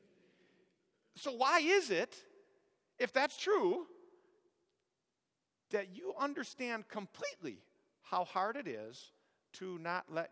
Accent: American